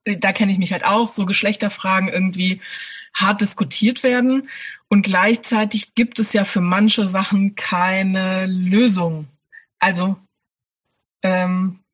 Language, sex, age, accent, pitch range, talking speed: German, female, 20-39, German, 185-220 Hz, 120 wpm